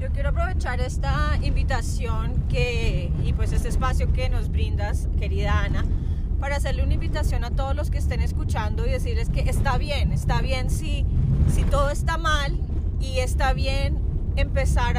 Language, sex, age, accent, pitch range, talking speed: Spanish, female, 30-49, Colombian, 75-80 Hz, 165 wpm